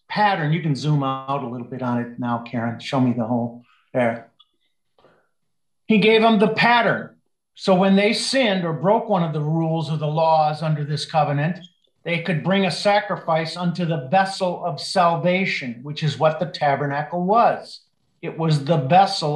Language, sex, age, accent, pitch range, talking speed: English, male, 50-69, American, 140-175 Hz, 180 wpm